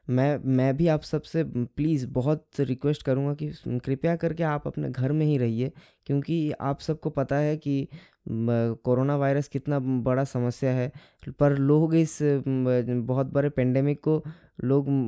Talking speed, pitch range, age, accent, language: 155 wpm, 125-145 Hz, 10-29, native, Hindi